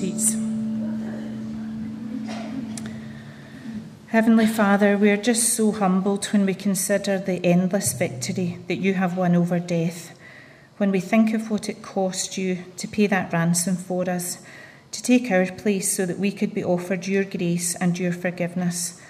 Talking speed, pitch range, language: 150 wpm, 175-195 Hz, English